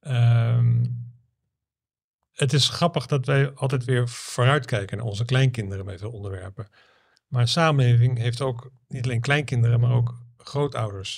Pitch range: 120-135 Hz